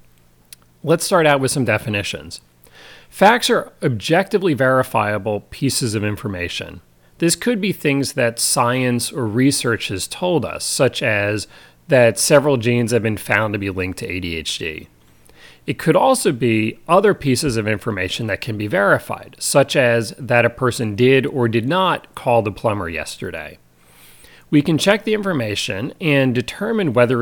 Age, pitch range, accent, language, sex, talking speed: 40-59, 105-160 Hz, American, English, male, 155 wpm